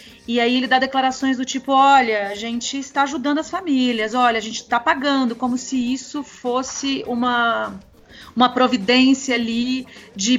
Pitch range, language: 220-255 Hz, Portuguese